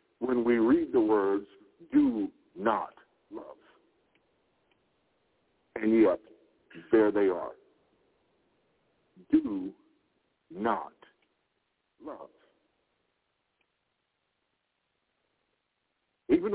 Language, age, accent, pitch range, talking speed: English, 60-79, American, 300-380 Hz, 60 wpm